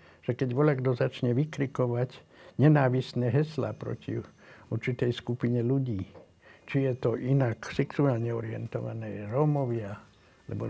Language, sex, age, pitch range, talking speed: Slovak, male, 70-89, 120-150 Hz, 105 wpm